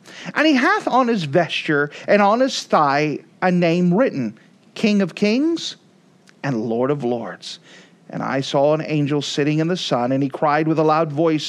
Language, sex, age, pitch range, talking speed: English, male, 40-59, 150-185 Hz, 190 wpm